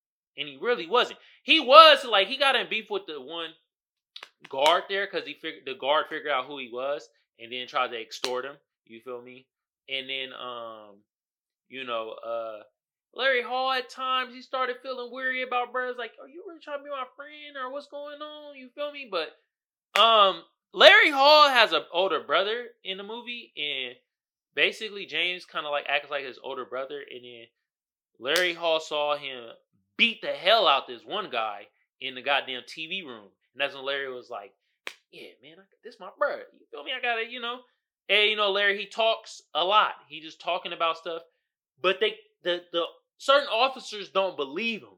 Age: 20-39